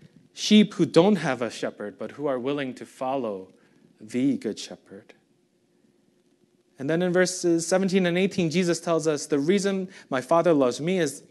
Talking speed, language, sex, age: 170 wpm, English, male, 30-49